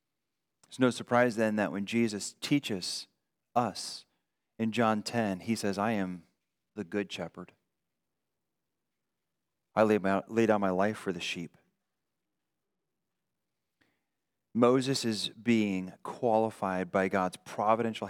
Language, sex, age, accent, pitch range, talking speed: English, male, 30-49, American, 105-130 Hz, 115 wpm